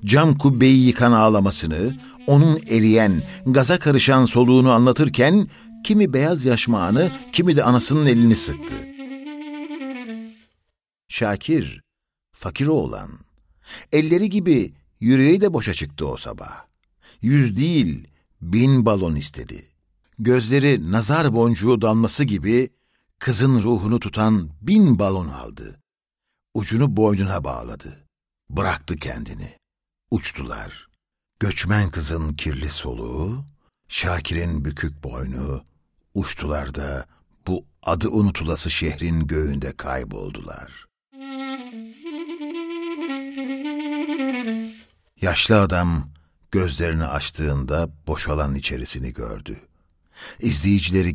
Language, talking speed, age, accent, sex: Turkish, 85 wpm, 60-79, native, male